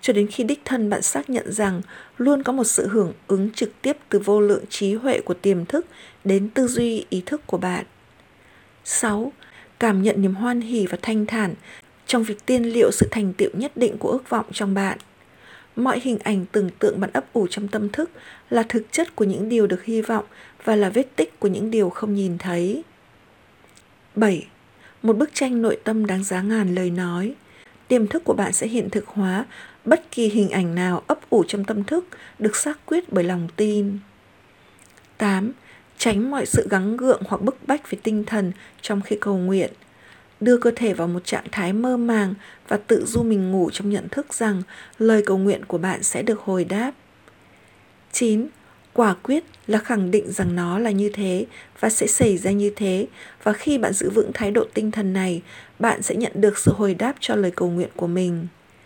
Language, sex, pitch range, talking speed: Vietnamese, female, 190-235 Hz, 205 wpm